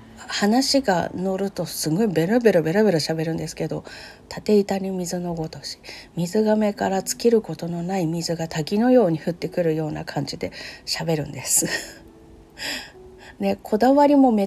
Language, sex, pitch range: Japanese, female, 170-215 Hz